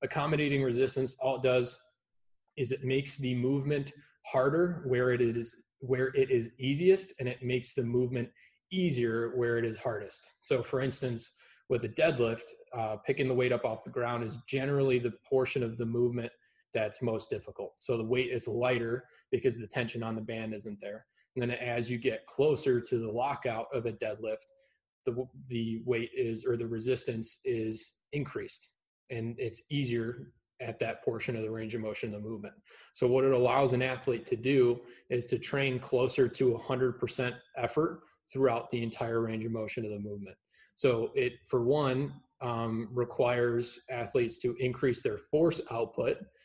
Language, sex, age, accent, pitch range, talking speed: English, male, 20-39, American, 115-130 Hz, 175 wpm